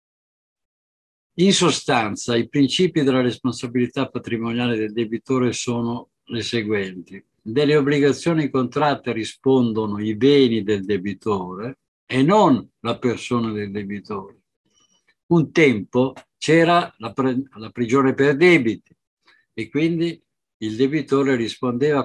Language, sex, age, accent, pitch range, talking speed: Italian, male, 60-79, native, 115-145 Hz, 110 wpm